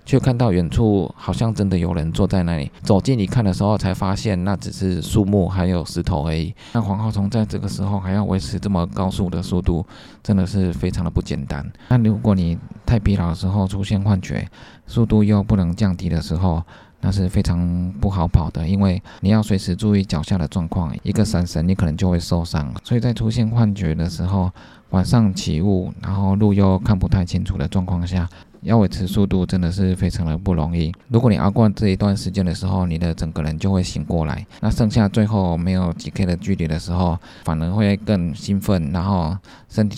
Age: 20-39